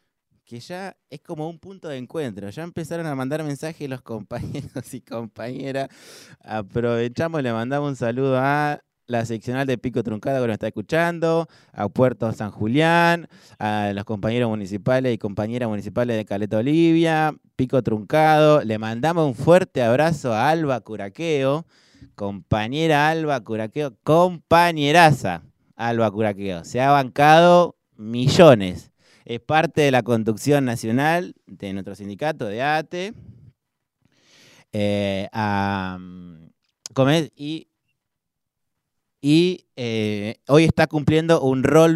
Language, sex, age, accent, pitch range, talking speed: Spanish, male, 20-39, Argentinian, 110-150 Hz, 125 wpm